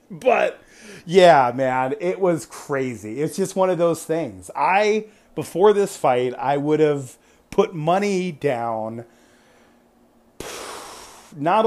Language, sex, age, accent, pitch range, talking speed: English, male, 40-59, American, 120-160 Hz, 120 wpm